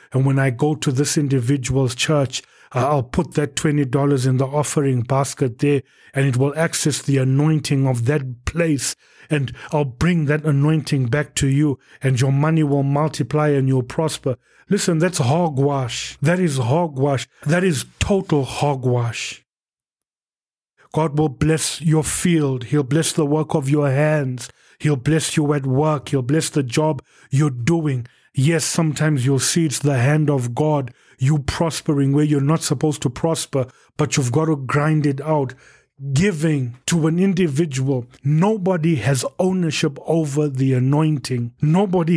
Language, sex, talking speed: English, male, 155 wpm